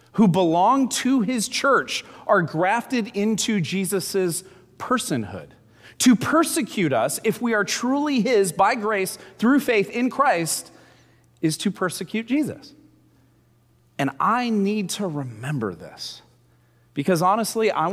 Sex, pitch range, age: male, 135-205 Hz, 30-49